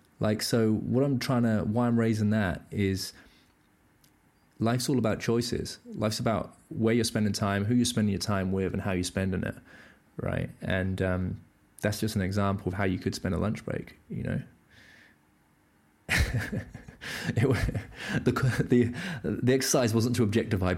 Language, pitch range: English, 95-115 Hz